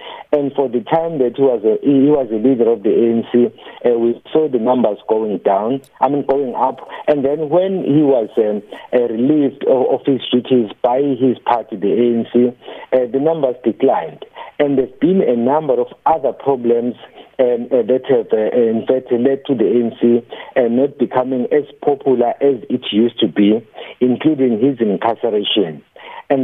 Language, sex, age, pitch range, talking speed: English, male, 50-69, 120-140 Hz, 180 wpm